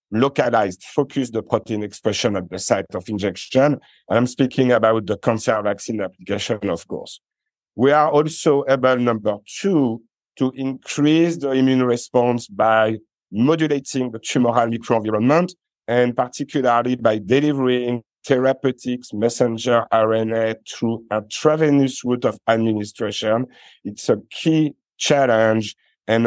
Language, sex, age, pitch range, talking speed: English, male, 50-69, 110-135 Hz, 120 wpm